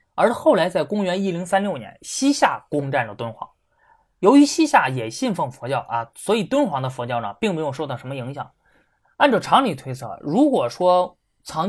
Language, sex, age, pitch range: Chinese, male, 20-39, 135-215 Hz